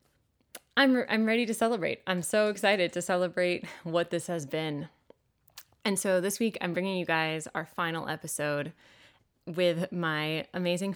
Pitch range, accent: 150-180 Hz, American